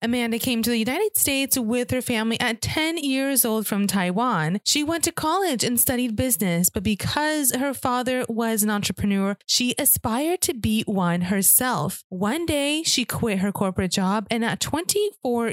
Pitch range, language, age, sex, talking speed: 205-270 Hz, English, 20-39, female, 175 wpm